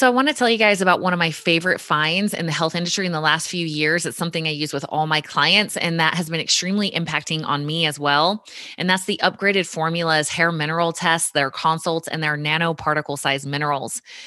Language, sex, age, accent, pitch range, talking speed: English, female, 20-39, American, 150-175 Hz, 230 wpm